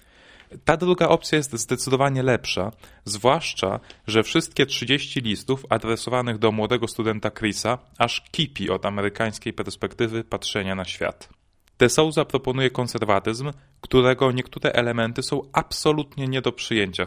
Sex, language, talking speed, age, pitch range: male, Polish, 125 wpm, 20-39, 105-125 Hz